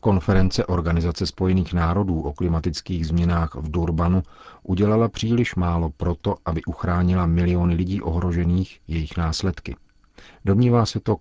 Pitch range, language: 80-95 Hz, Czech